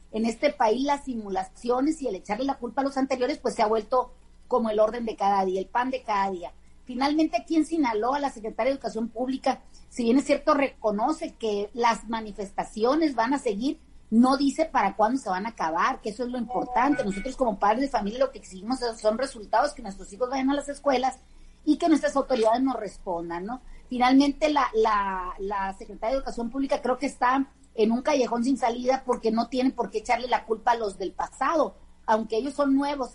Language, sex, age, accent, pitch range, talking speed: Spanish, female, 40-59, Mexican, 215-265 Hz, 215 wpm